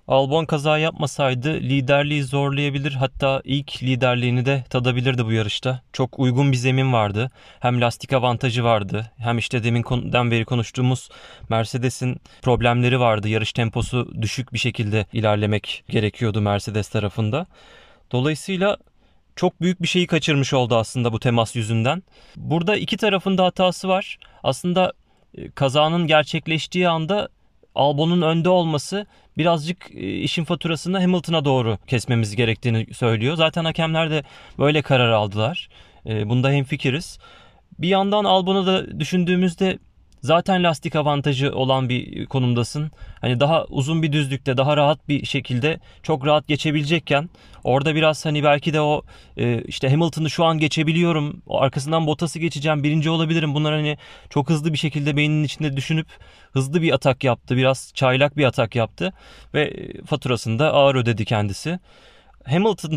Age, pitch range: 30-49, 125-160 Hz